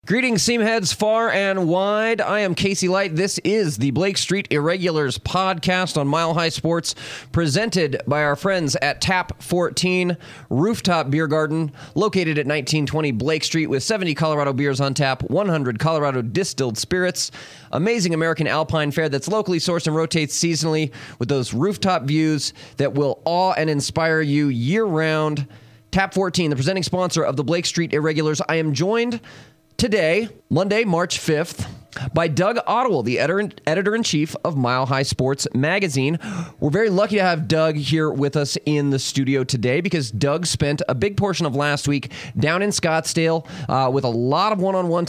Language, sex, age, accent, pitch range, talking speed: English, male, 30-49, American, 140-180 Hz, 165 wpm